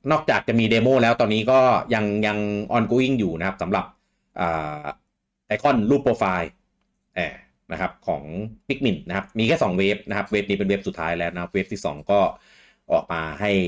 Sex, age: male, 30-49